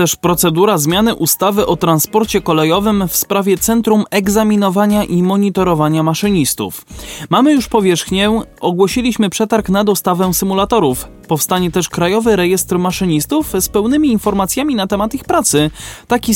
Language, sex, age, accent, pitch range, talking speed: Polish, male, 20-39, native, 170-225 Hz, 130 wpm